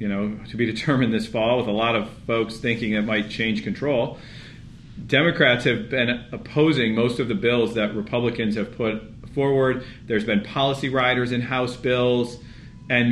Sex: male